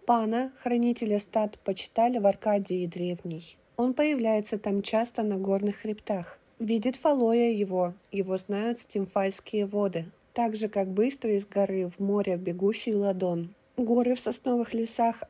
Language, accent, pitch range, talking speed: Russian, native, 195-235 Hz, 135 wpm